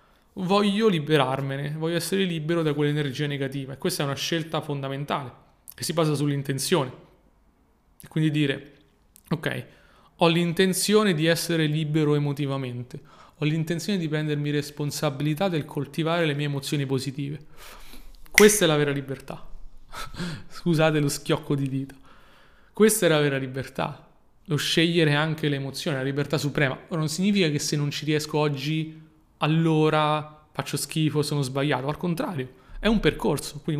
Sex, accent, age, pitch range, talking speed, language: male, native, 30-49, 140-165 Hz, 145 wpm, Italian